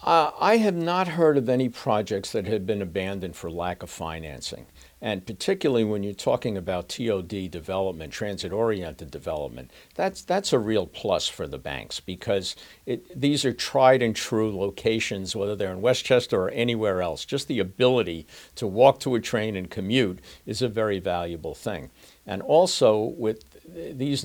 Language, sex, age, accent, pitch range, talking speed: English, male, 60-79, American, 95-115 Hz, 165 wpm